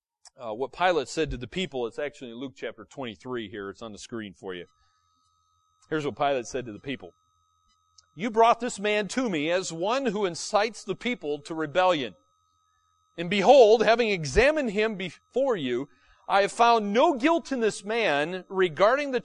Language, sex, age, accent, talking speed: English, male, 40-59, American, 180 wpm